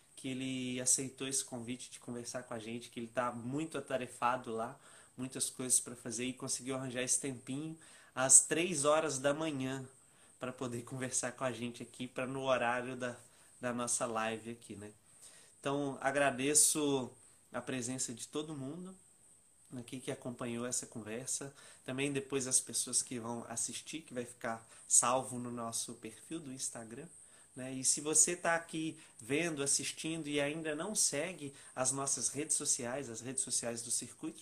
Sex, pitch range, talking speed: male, 125-155 Hz, 165 wpm